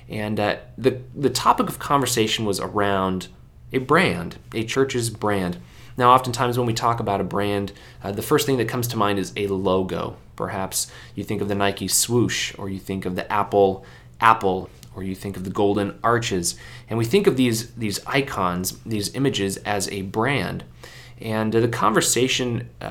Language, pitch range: English, 100-125 Hz